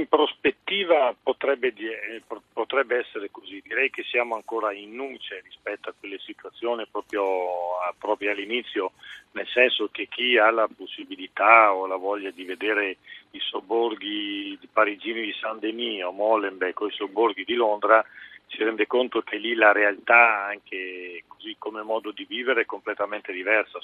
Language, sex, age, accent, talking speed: Italian, male, 40-59, native, 155 wpm